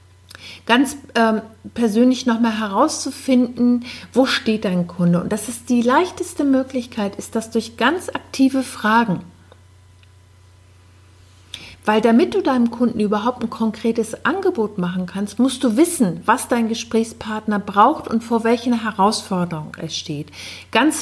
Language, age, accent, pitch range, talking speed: German, 50-69, German, 195-255 Hz, 130 wpm